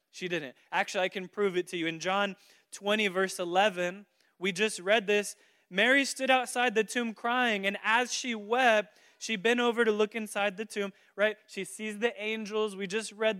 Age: 20-39